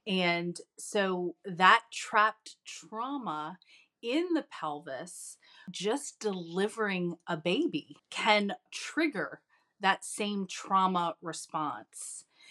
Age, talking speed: 30-49, 85 wpm